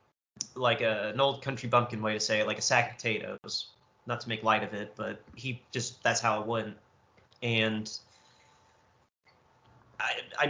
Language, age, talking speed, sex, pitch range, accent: English, 30-49, 175 wpm, male, 115-130 Hz, American